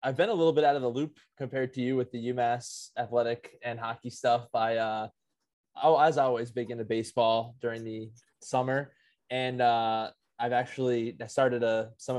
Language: English